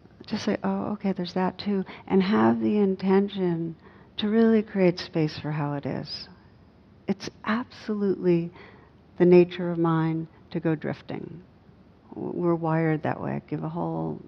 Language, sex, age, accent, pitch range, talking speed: English, female, 60-79, American, 150-195 Hz, 150 wpm